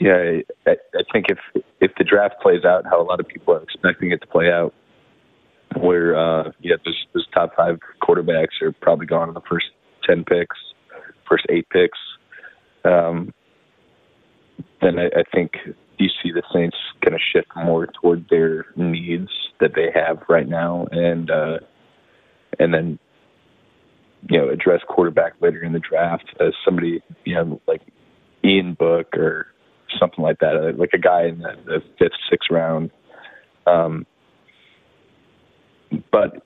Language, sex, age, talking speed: English, male, 30-49, 155 wpm